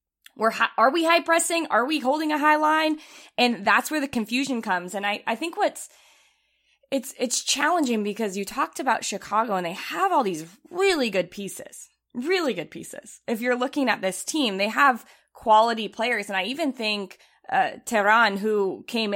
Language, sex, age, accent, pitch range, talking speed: English, female, 20-39, American, 200-270 Hz, 190 wpm